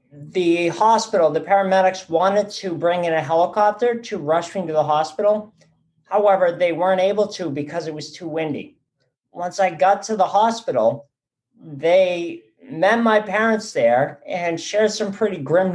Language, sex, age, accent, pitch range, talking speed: English, male, 50-69, American, 155-190 Hz, 160 wpm